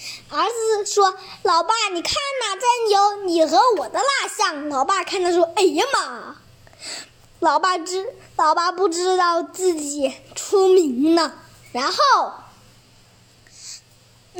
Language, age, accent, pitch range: Chinese, 20-39, native, 320-435 Hz